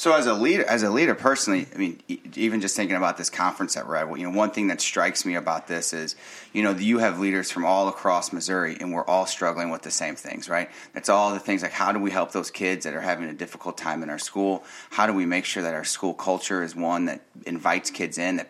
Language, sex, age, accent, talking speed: English, male, 30-49, American, 270 wpm